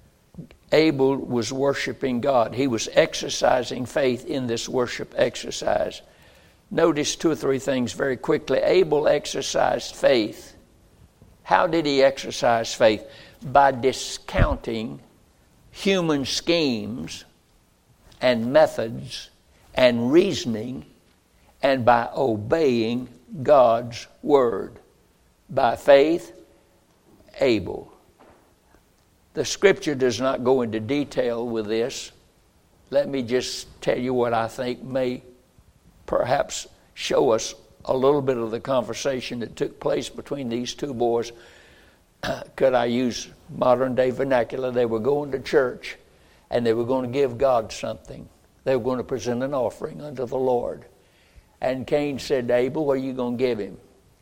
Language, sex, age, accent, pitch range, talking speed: English, male, 60-79, American, 120-140 Hz, 130 wpm